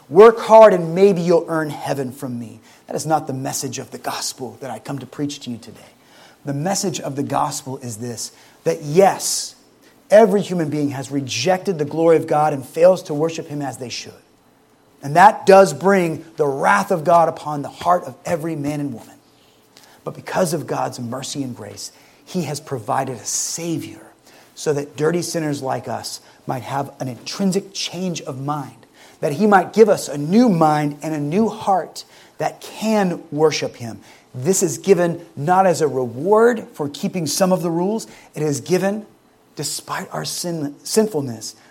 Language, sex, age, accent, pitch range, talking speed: English, male, 30-49, American, 140-185 Hz, 185 wpm